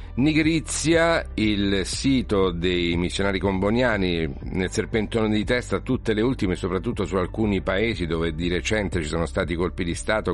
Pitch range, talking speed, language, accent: 85-105 Hz, 150 wpm, Italian, native